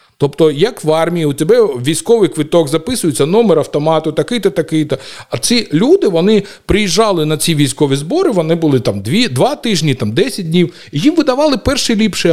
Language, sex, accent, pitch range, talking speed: Ukrainian, male, native, 140-195 Hz, 170 wpm